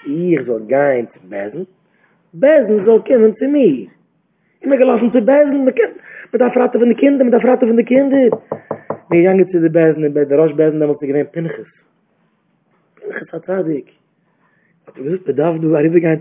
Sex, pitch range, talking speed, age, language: male, 150-225 Hz, 190 wpm, 30-49, English